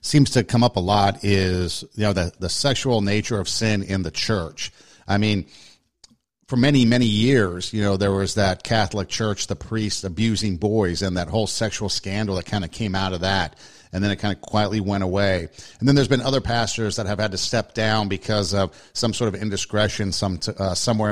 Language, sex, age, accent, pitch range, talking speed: English, male, 50-69, American, 100-120 Hz, 215 wpm